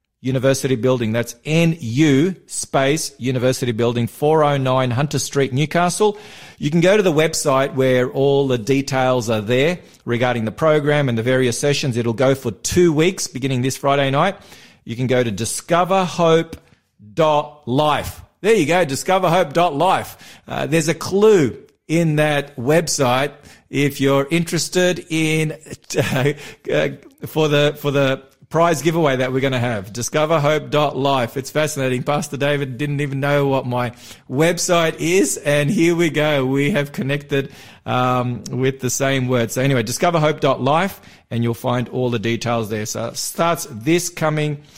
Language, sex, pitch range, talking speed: English, male, 125-155 Hz, 155 wpm